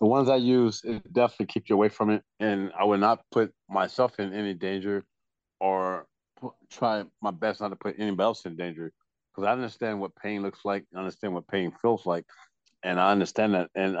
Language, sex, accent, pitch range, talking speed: English, male, American, 95-115 Hz, 215 wpm